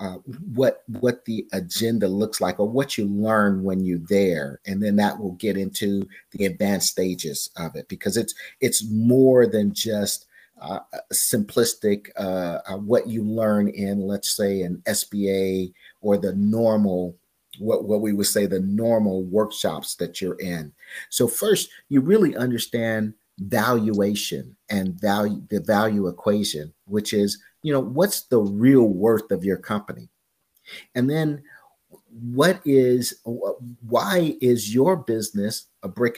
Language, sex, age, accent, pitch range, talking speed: English, male, 50-69, American, 100-120 Hz, 150 wpm